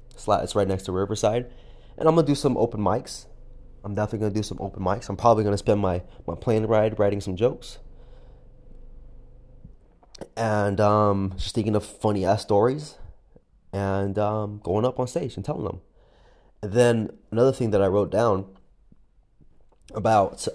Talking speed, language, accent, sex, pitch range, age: 165 wpm, English, American, male, 100-140 Hz, 20-39